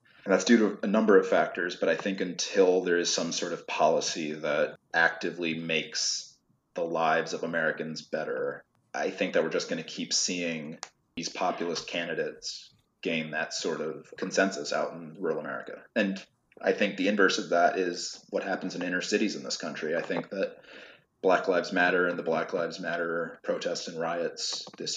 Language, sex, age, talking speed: English, male, 30-49, 185 wpm